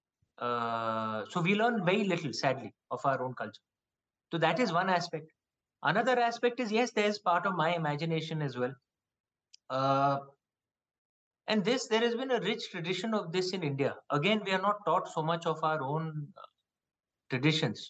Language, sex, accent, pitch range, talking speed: Hindi, male, native, 140-205 Hz, 175 wpm